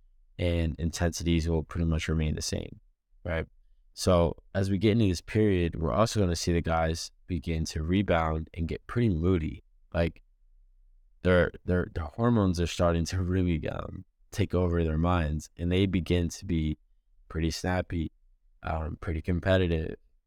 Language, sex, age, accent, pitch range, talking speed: English, male, 20-39, American, 80-95 Hz, 155 wpm